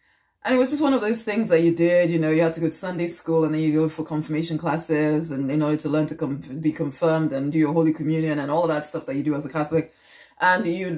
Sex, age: female, 30-49